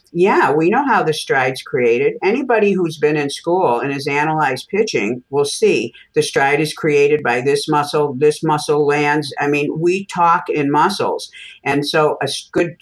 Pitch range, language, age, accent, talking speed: 140-180 Hz, English, 50-69, American, 180 wpm